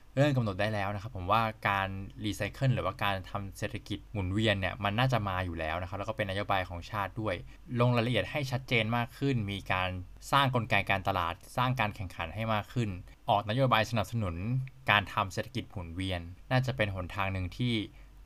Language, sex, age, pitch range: Thai, male, 20-39, 95-120 Hz